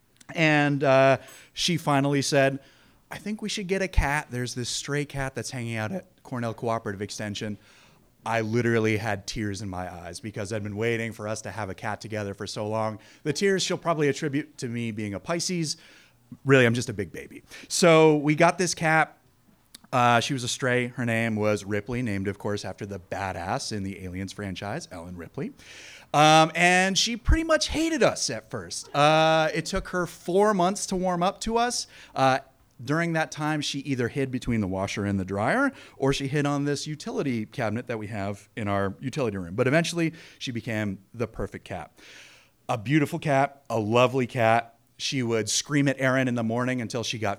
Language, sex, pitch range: English, male, 105-150 Hz